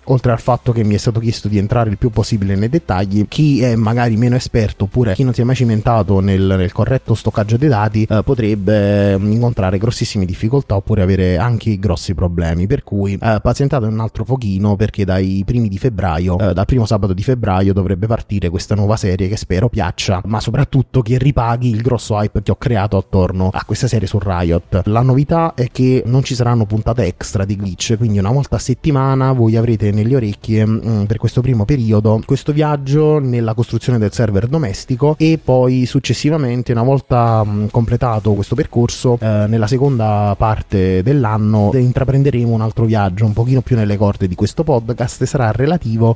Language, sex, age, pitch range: Italian, male, 30-49, 105-125 Hz